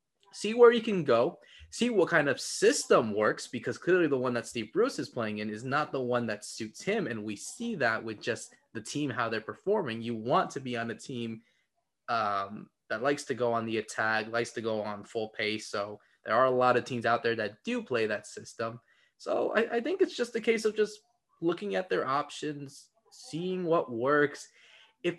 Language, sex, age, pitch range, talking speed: English, male, 20-39, 115-185 Hz, 220 wpm